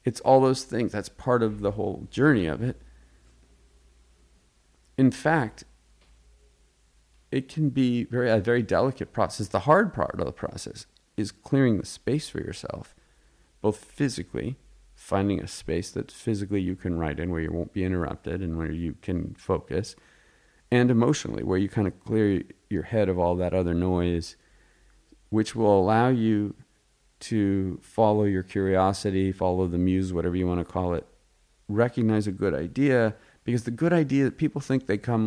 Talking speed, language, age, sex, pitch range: 170 wpm, English, 40-59, male, 85-120 Hz